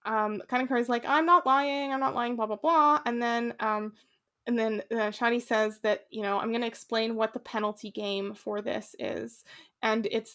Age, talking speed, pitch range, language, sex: 20-39, 205 wpm, 210-235 Hz, English, female